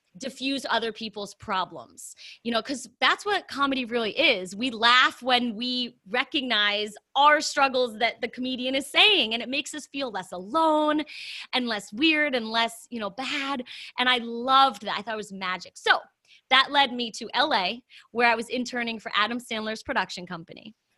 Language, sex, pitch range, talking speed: English, female, 210-265 Hz, 180 wpm